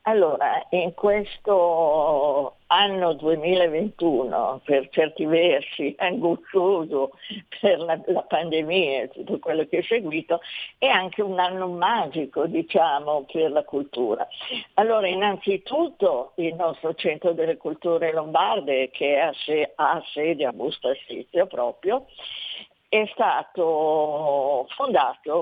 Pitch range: 155-205 Hz